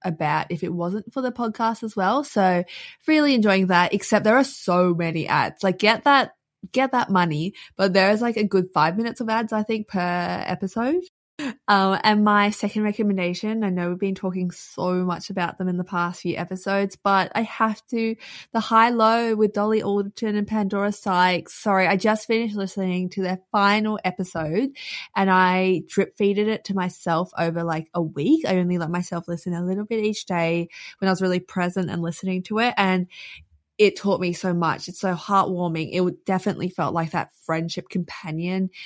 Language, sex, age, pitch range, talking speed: English, female, 20-39, 175-215 Hz, 195 wpm